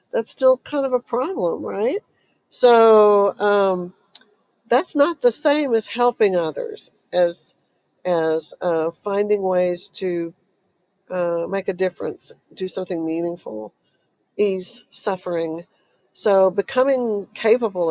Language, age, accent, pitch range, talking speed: English, 60-79, American, 190-260 Hz, 115 wpm